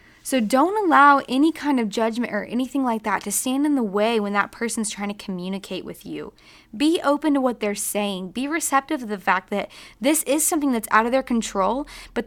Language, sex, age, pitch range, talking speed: English, female, 10-29, 205-265 Hz, 220 wpm